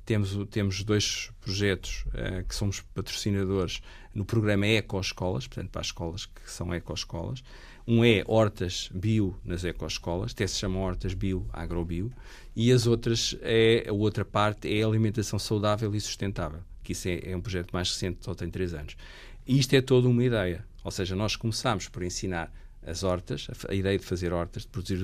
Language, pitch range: Portuguese, 95-115 Hz